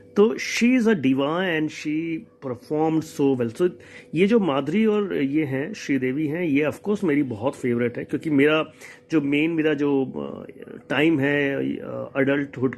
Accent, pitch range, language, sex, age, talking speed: native, 135-170 Hz, Hindi, male, 30-49, 160 wpm